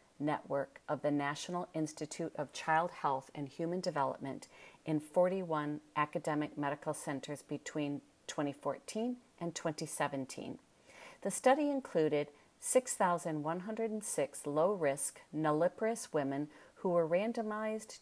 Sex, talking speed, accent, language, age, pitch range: female, 100 wpm, American, English, 40-59, 145-175 Hz